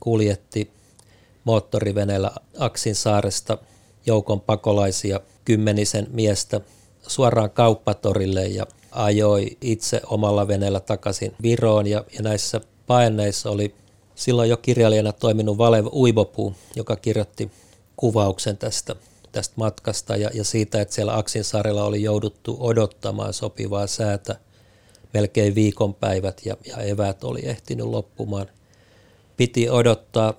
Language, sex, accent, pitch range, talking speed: Finnish, male, native, 100-115 Hz, 105 wpm